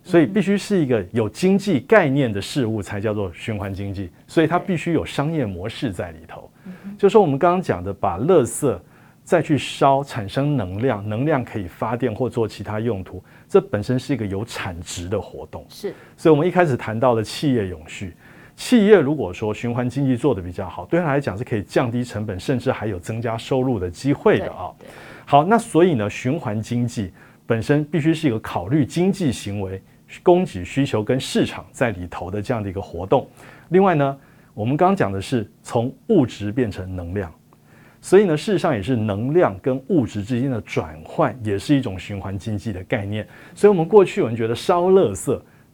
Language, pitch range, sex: Chinese, 105-155 Hz, male